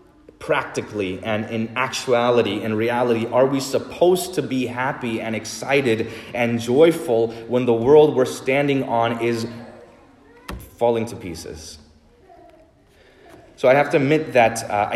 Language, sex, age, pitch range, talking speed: English, male, 20-39, 105-135 Hz, 130 wpm